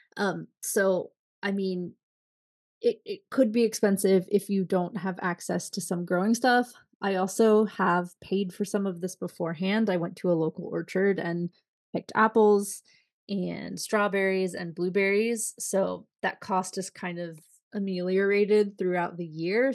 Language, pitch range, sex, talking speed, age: English, 180-225 Hz, female, 150 wpm, 20-39